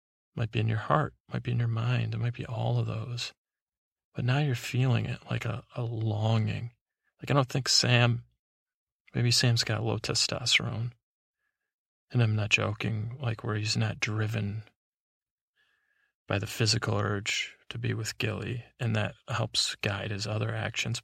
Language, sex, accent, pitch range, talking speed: English, male, American, 110-120 Hz, 170 wpm